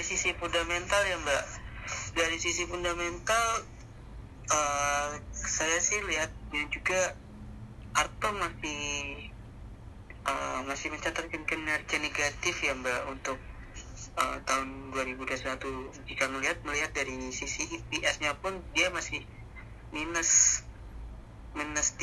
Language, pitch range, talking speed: Indonesian, 115-155 Hz, 105 wpm